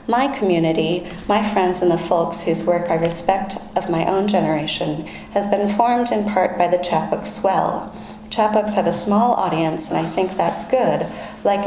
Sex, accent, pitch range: female, American, 170-210 Hz